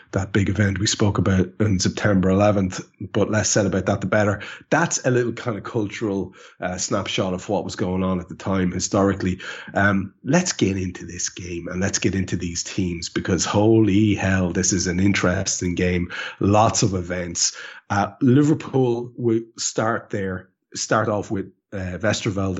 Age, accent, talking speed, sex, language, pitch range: 30-49, Irish, 175 wpm, male, English, 90-105 Hz